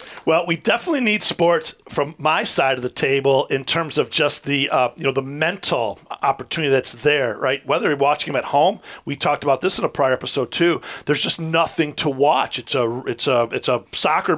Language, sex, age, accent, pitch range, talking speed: English, male, 40-59, American, 140-170 Hz, 215 wpm